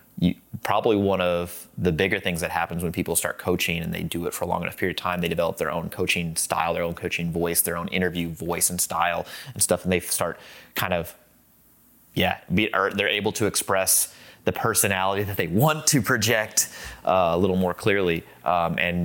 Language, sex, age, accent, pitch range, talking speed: English, male, 30-49, American, 85-100 Hz, 215 wpm